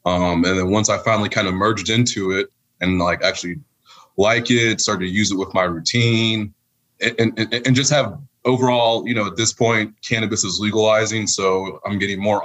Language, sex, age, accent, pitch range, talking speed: English, male, 20-39, American, 95-120 Hz, 200 wpm